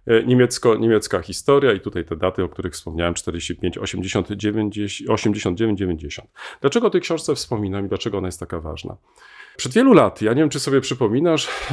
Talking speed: 160 wpm